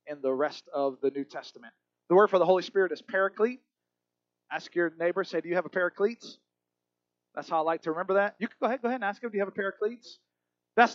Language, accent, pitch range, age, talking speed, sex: English, American, 140-205 Hz, 30-49, 250 wpm, male